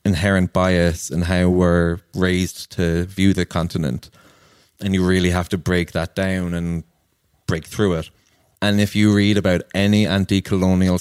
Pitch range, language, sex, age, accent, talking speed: 90-100 Hz, English, male, 20-39, Irish, 160 wpm